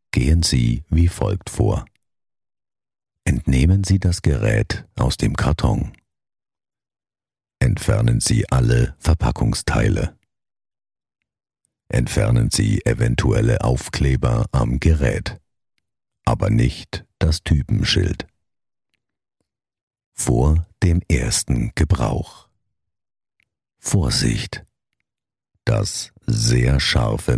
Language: German